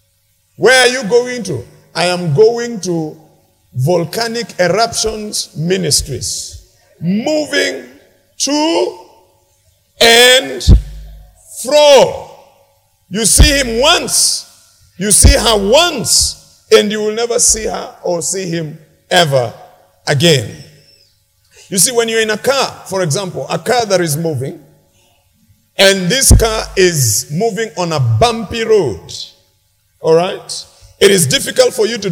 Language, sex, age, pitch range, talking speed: English, male, 50-69, 150-230 Hz, 125 wpm